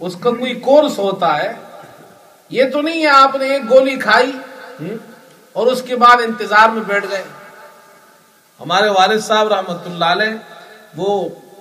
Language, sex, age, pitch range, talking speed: Urdu, male, 40-59, 175-225 Hz, 140 wpm